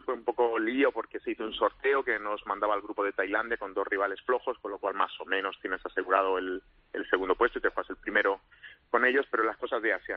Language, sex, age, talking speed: Spanish, male, 30-49, 260 wpm